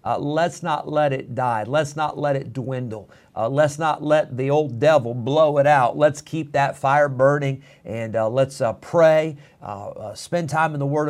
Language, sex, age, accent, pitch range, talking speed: English, male, 50-69, American, 125-150 Hz, 205 wpm